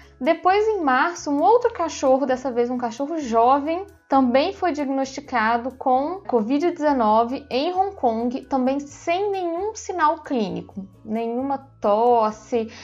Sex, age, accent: female, 20-39, Brazilian